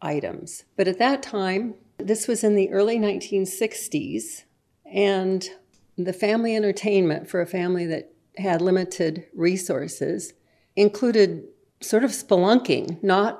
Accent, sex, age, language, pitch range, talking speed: American, female, 50-69, English, 180-215 Hz, 120 wpm